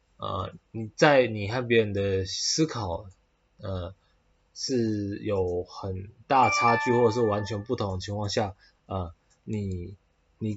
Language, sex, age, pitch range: Chinese, male, 20-39, 95-130 Hz